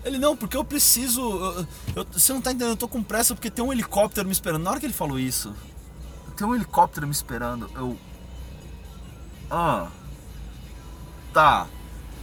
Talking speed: 170 wpm